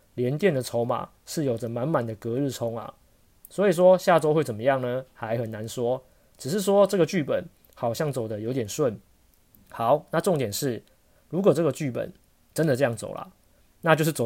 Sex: male